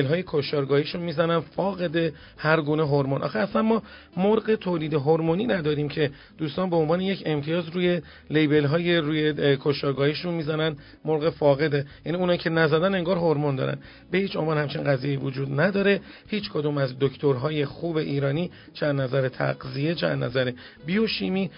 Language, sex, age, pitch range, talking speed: Persian, male, 40-59, 145-175 Hz, 150 wpm